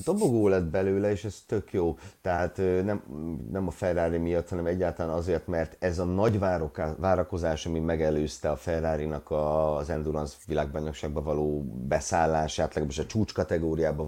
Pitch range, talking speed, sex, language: 80-110 Hz, 140 wpm, male, Hungarian